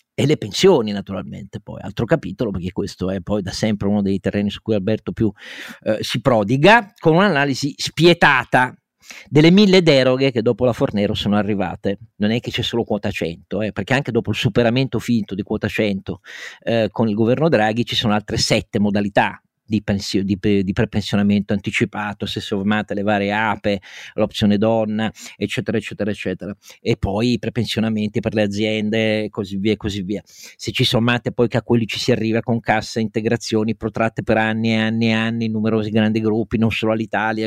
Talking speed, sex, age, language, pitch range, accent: 185 wpm, male, 40-59, Italian, 105-125 Hz, native